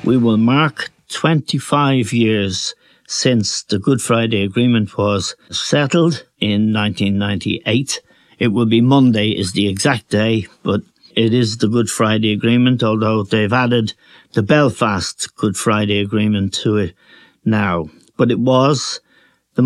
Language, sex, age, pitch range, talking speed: English, male, 60-79, 110-130 Hz, 135 wpm